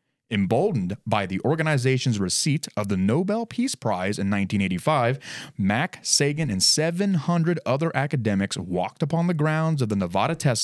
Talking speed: 145 wpm